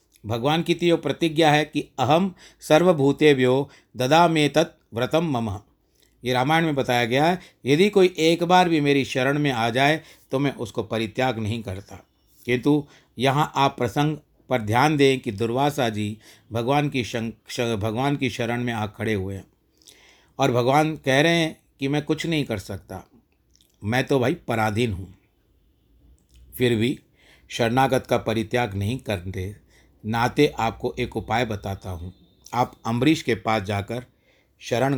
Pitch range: 110-145 Hz